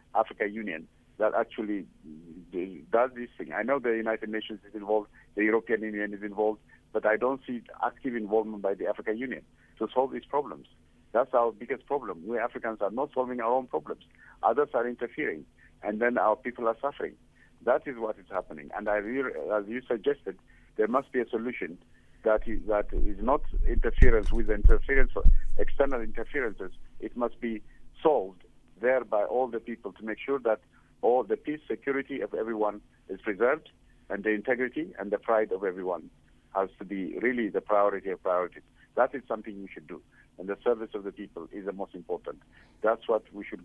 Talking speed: 190 wpm